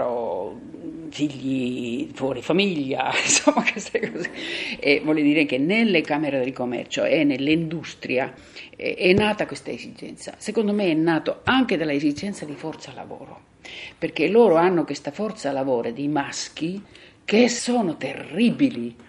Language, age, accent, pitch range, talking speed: Italian, 50-69, native, 145-235 Hz, 135 wpm